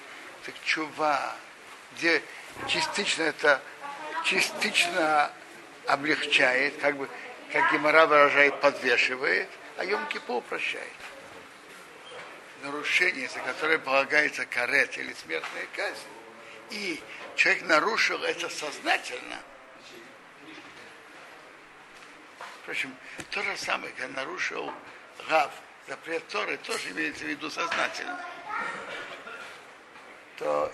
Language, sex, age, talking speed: Russian, male, 60-79, 90 wpm